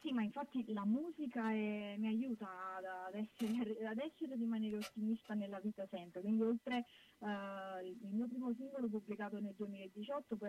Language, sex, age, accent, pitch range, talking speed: Italian, female, 20-39, native, 190-225 Hz, 165 wpm